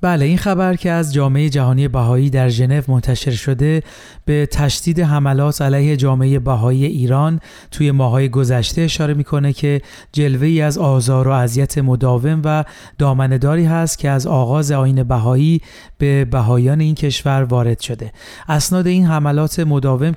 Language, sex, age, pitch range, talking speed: Persian, male, 40-59, 130-155 Hz, 150 wpm